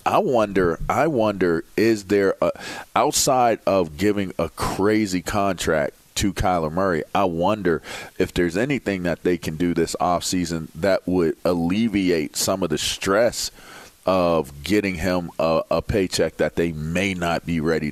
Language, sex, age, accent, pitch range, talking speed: English, male, 40-59, American, 85-105 Hz, 150 wpm